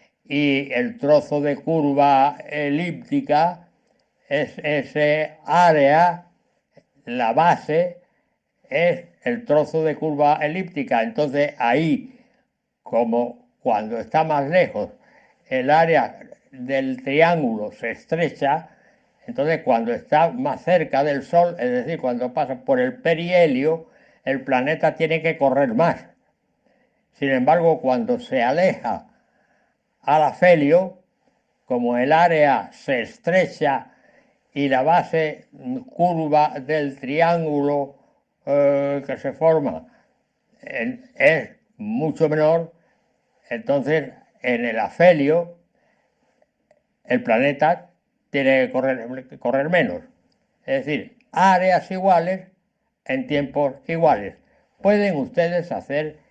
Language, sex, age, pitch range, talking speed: Spanish, male, 60-79, 140-185 Hz, 100 wpm